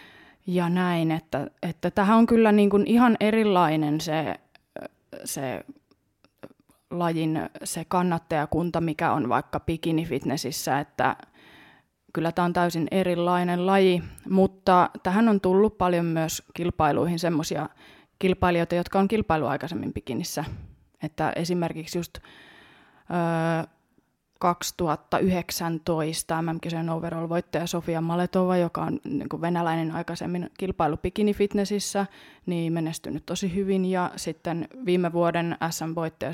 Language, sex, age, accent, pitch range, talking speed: Finnish, female, 20-39, native, 165-200 Hz, 110 wpm